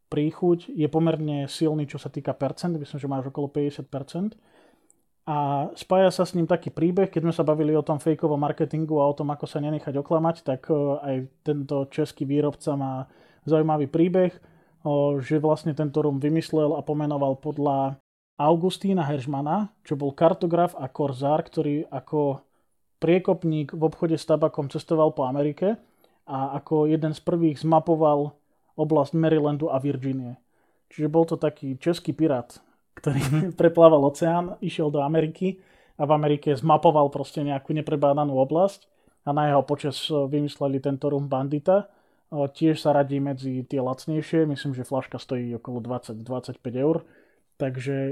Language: Slovak